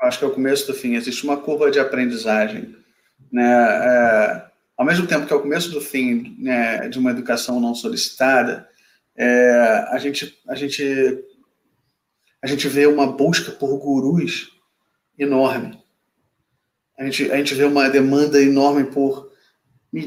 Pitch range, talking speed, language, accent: 130-155 Hz, 155 wpm, Portuguese, Brazilian